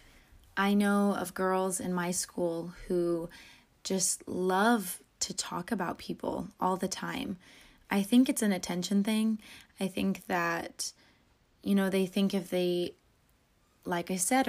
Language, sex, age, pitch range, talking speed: English, female, 20-39, 180-200 Hz, 145 wpm